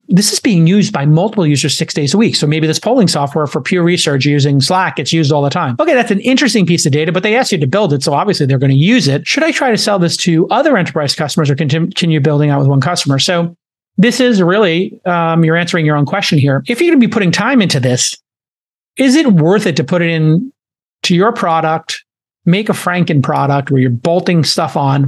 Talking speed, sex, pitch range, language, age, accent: 245 wpm, male, 145-190 Hz, English, 40-59, American